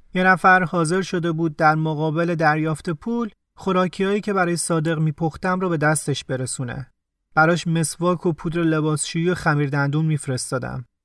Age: 30-49